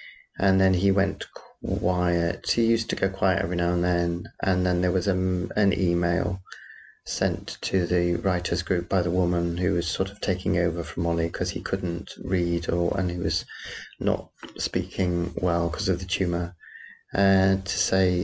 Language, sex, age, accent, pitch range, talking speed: English, male, 30-49, British, 90-110 Hz, 185 wpm